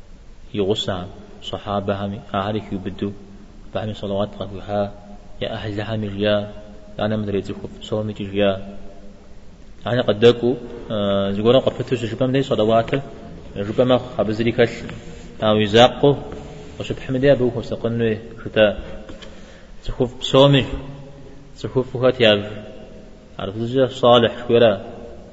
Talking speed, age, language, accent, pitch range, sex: 40 wpm, 20-39, Czech, Turkish, 100-120 Hz, male